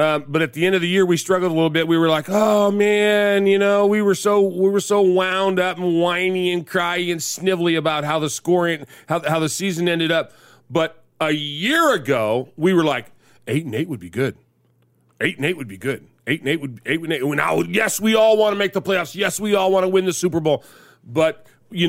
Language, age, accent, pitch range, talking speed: English, 40-59, American, 150-200 Hz, 255 wpm